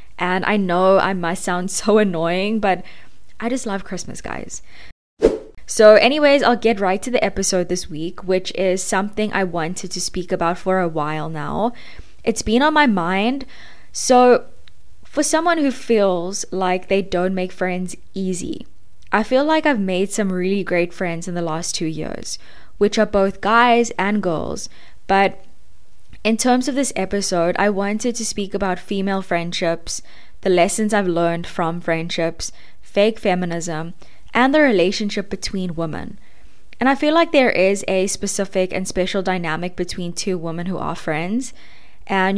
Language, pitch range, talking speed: English, 175-215 Hz, 165 wpm